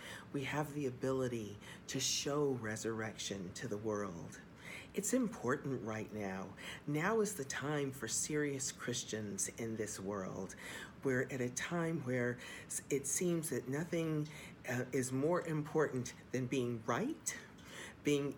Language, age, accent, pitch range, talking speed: English, 40-59, American, 125-165 Hz, 135 wpm